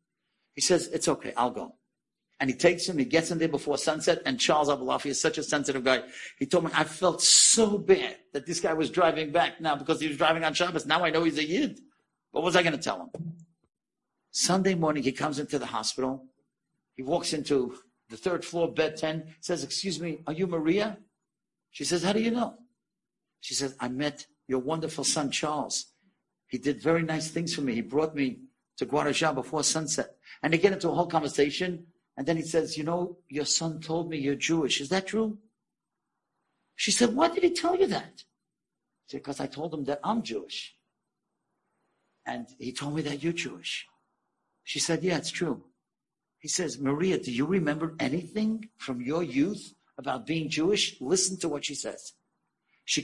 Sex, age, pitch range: male, 50-69, 145-180 Hz